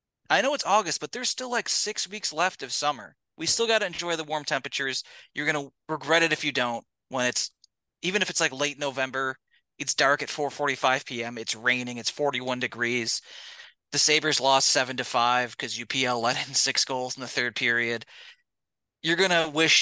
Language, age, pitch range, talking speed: English, 30-49, 130-165 Hz, 205 wpm